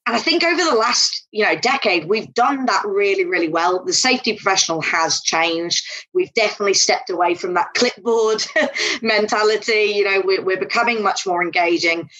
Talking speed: 170 wpm